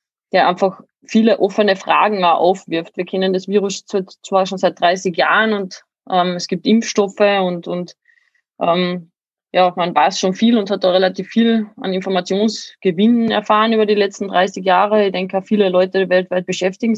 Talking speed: 165 wpm